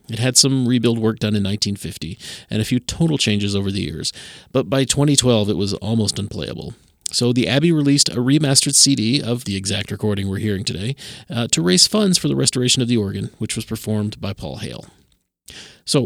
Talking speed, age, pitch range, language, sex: 200 wpm, 40-59, 105-135 Hz, English, male